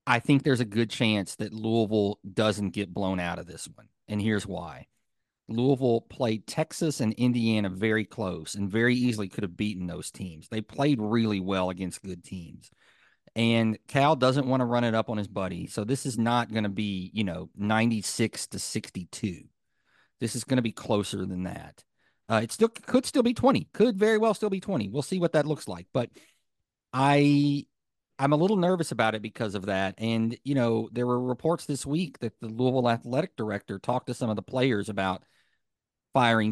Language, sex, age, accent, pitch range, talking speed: English, male, 40-59, American, 105-130 Hz, 200 wpm